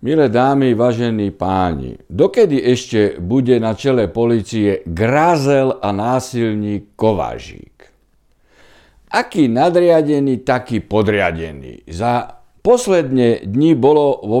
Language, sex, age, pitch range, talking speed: Slovak, male, 60-79, 110-180 Hz, 95 wpm